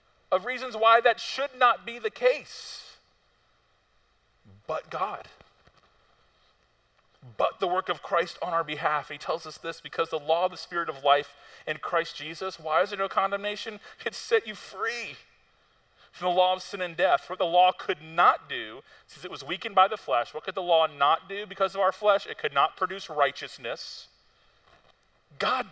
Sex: male